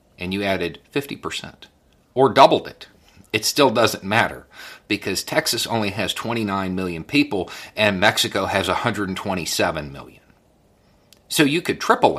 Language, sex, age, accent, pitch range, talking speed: English, male, 50-69, American, 90-115 Hz, 135 wpm